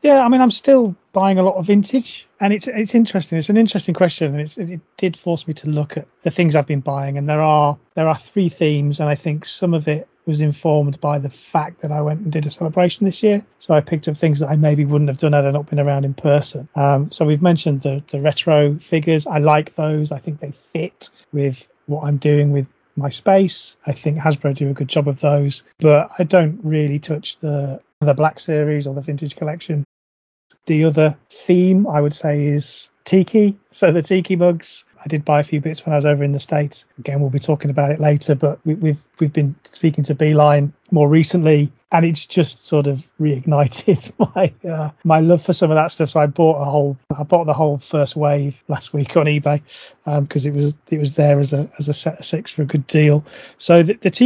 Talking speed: 235 wpm